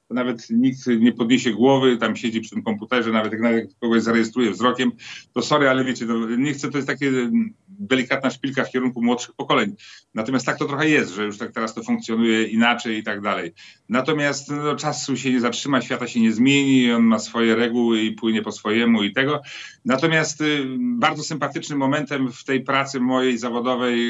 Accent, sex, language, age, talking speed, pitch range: native, male, Polish, 40-59, 180 wpm, 115-135 Hz